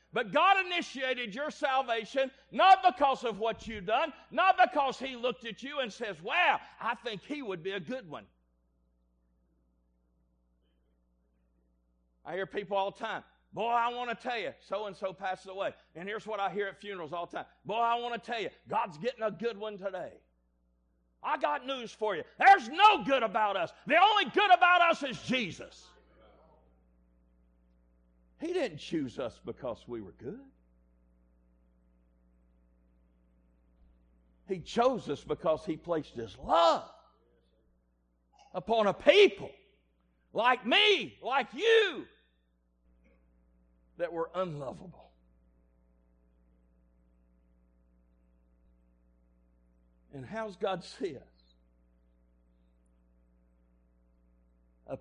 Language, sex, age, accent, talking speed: English, male, 50-69, American, 125 wpm